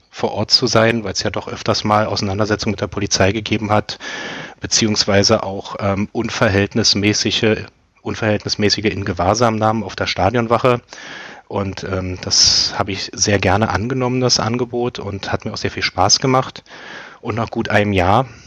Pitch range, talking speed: 100-120 Hz, 155 wpm